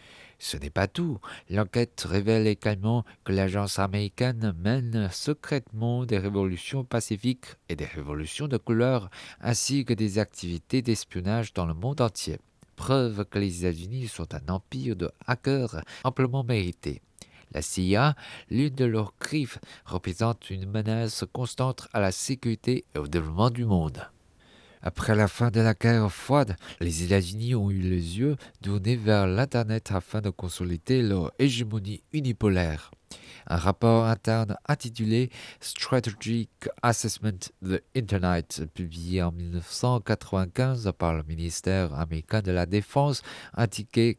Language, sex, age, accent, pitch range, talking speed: French, male, 50-69, French, 90-120 Hz, 140 wpm